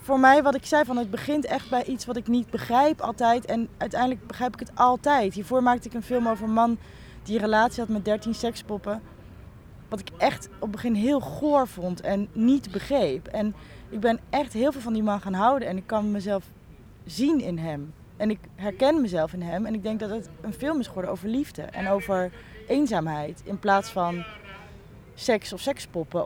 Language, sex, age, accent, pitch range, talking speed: Dutch, female, 20-39, Dutch, 200-245 Hz, 215 wpm